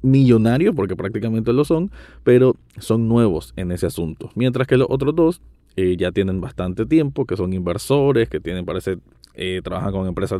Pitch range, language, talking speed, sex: 95-130 Hz, Spanish, 180 wpm, male